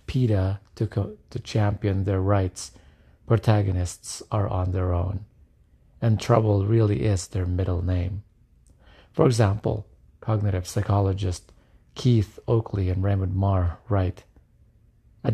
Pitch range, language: 95-115 Hz, English